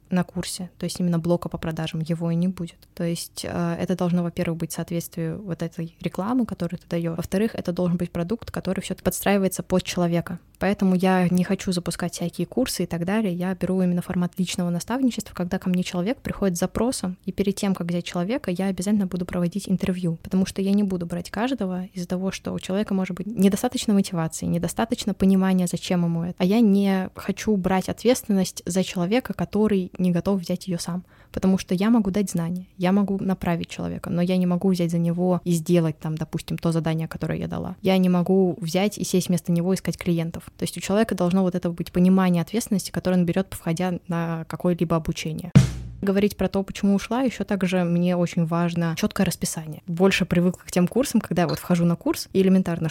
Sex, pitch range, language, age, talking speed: female, 175-195 Hz, Russian, 20-39, 205 wpm